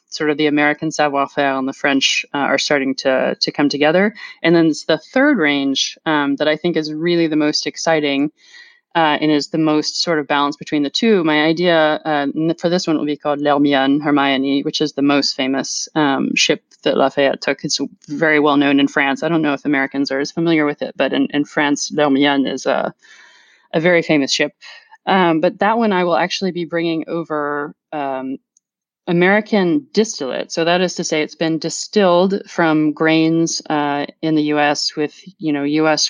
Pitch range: 145-170 Hz